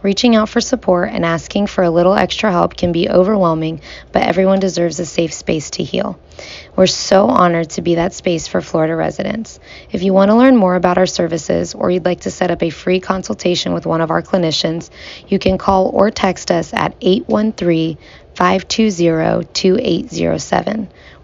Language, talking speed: English, 180 wpm